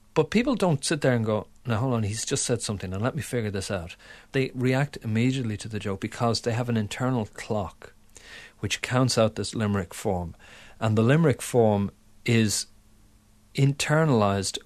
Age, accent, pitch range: 50-69, Irish, 100-125 Hz